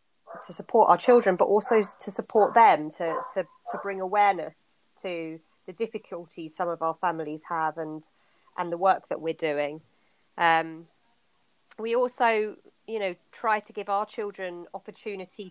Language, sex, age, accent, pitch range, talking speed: English, female, 30-49, British, 160-200 Hz, 155 wpm